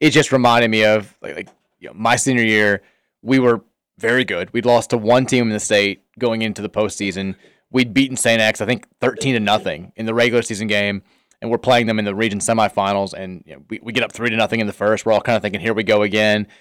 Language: English